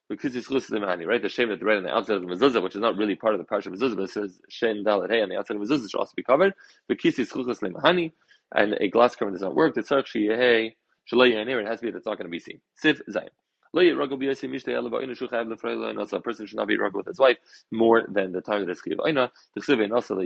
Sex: male